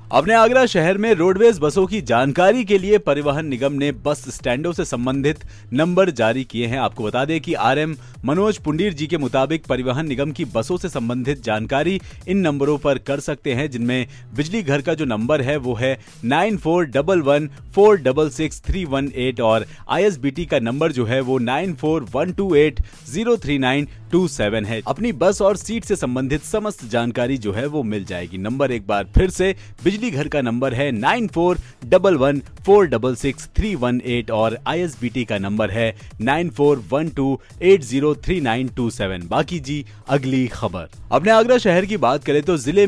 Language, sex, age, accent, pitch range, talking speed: Hindi, male, 30-49, native, 125-175 Hz, 160 wpm